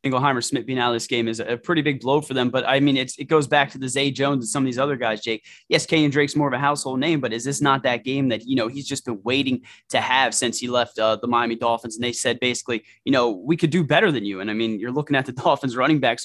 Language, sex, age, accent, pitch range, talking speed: English, male, 20-39, American, 120-145 Hz, 305 wpm